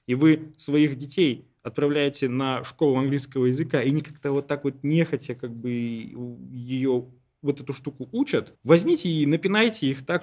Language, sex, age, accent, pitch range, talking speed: Russian, male, 20-39, native, 120-160 Hz, 165 wpm